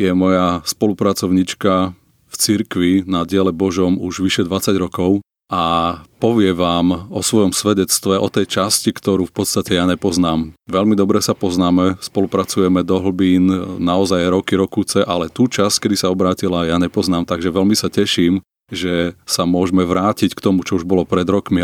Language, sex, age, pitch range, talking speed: Slovak, male, 30-49, 90-100 Hz, 165 wpm